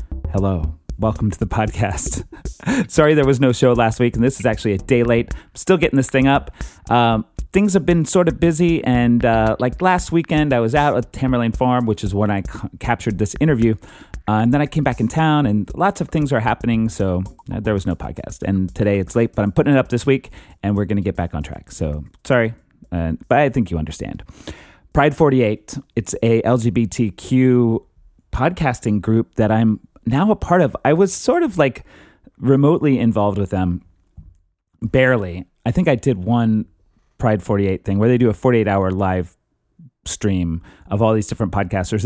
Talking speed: 200 wpm